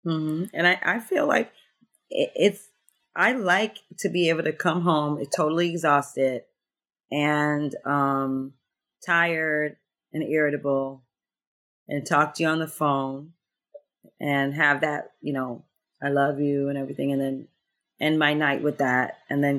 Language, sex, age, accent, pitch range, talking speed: English, female, 30-49, American, 145-180 Hz, 150 wpm